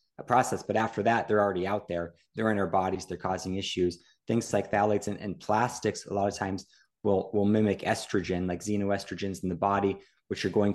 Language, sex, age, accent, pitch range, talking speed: English, male, 20-39, American, 90-110 Hz, 210 wpm